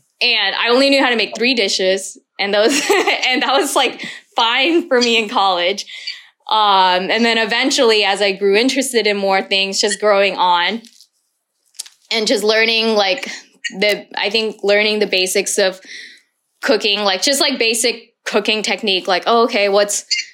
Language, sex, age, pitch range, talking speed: Vietnamese, female, 10-29, 200-240 Hz, 160 wpm